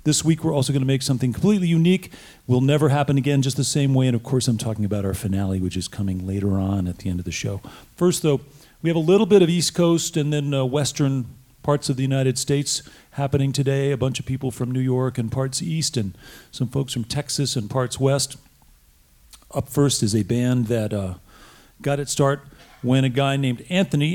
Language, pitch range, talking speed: English, 120-150 Hz, 225 wpm